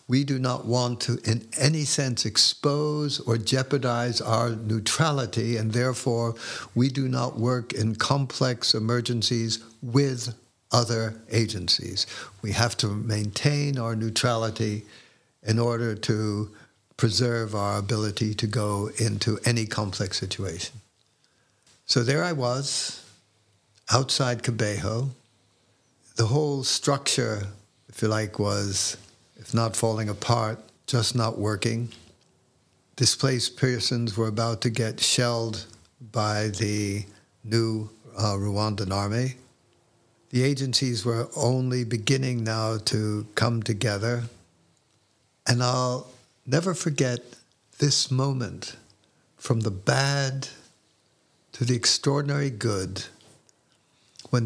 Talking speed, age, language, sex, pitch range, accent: 110 wpm, 60-79, English, male, 110-125 Hz, American